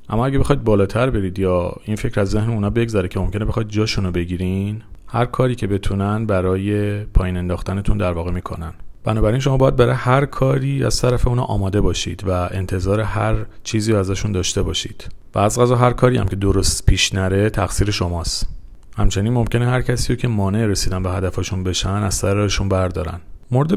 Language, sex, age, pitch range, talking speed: Persian, male, 40-59, 95-115 Hz, 180 wpm